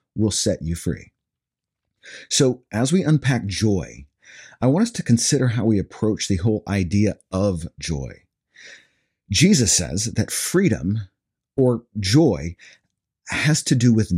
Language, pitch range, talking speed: English, 100-140 Hz, 135 wpm